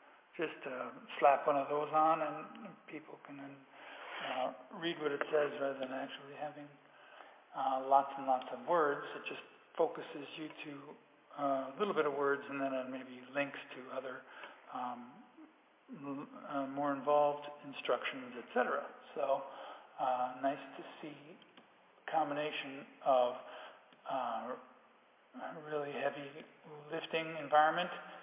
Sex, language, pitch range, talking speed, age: male, English, 130-150 Hz, 135 wpm, 50-69